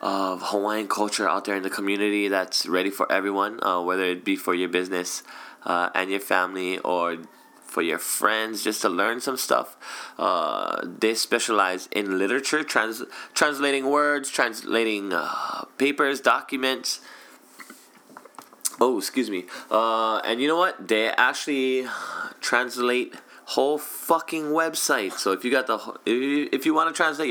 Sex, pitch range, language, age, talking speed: male, 95-135 Hz, English, 20-39, 155 wpm